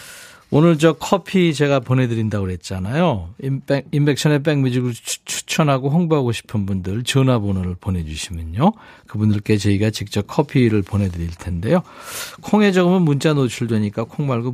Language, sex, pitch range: Korean, male, 105-155 Hz